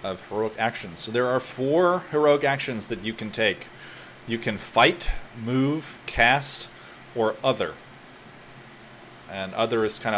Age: 30-49